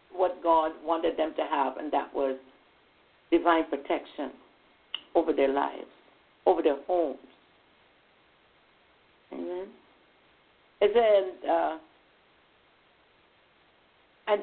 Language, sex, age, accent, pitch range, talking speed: English, female, 60-79, American, 180-260 Hz, 90 wpm